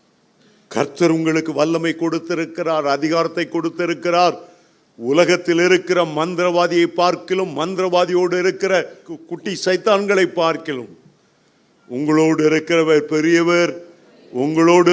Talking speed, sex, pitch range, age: 75 wpm, male, 160-190 Hz, 50-69